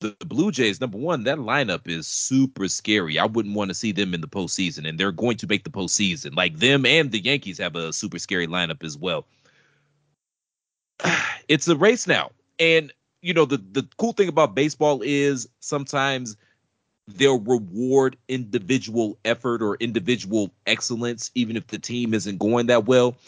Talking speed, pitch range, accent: 175 wpm, 100-140 Hz, American